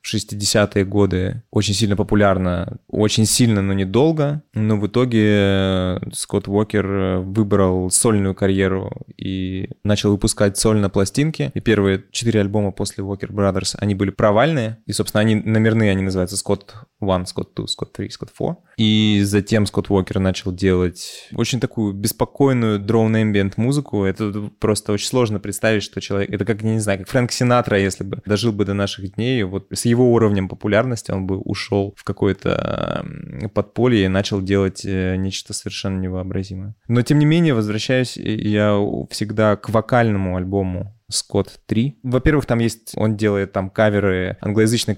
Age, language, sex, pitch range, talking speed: 20-39, Russian, male, 95-110 Hz, 155 wpm